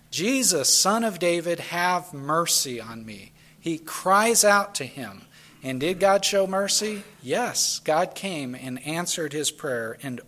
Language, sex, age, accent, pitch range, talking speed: English, male, 40-59, American, 130-185 Hz, 150 wpm